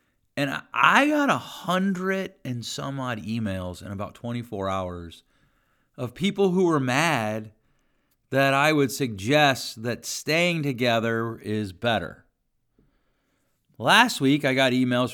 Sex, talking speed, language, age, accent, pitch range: male, 125 wpm, English, 40-59, American, 115-155 Hz